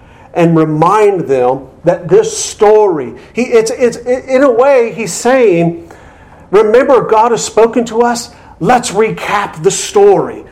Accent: American